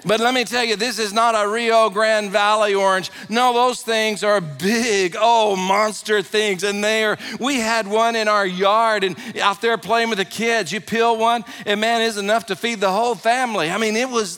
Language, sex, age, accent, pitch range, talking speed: English, male, 50-69, American, 200-235 Hz, 220 wpm